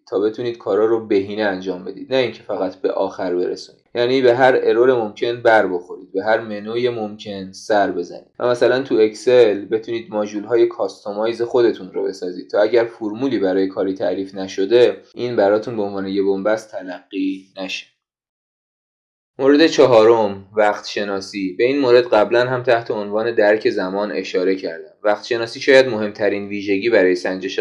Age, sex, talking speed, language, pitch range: 20-39, male, 160 wpm, Persian, 95-130 Hz